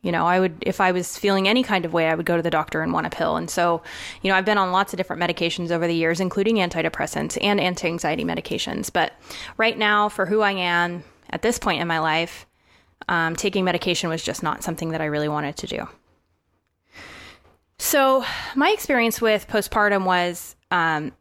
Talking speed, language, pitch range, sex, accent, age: 210 wpm, English, 175-215 Hz, female, American, 20-39